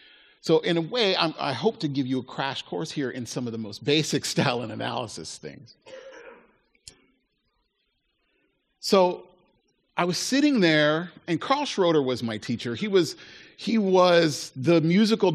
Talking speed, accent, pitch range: 160 wpm, American, 120-175 Hz